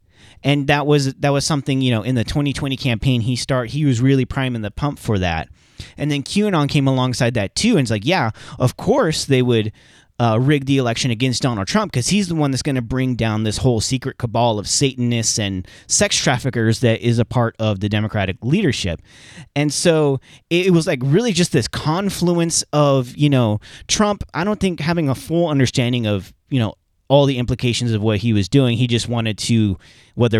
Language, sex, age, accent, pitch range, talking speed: English, male, 30-49, American, 115-145 Hz, 210 wpm